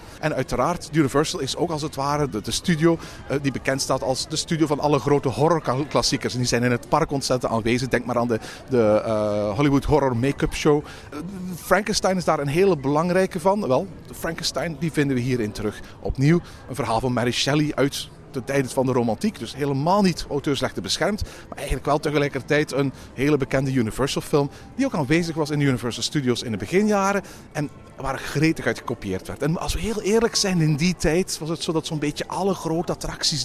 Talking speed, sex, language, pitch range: 200 wpm, male, Dutch, 120-155 Hz